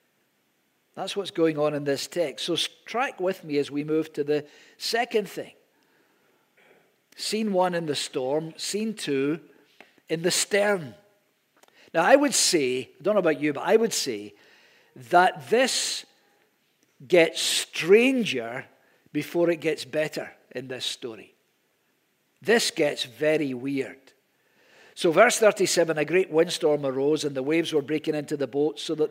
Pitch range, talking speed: 150-200 Hz, 150 wpm